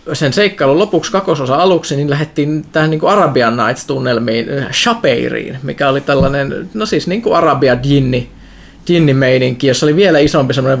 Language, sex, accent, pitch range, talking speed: Finnish, male, native, 130-155 Hz, 140 wpm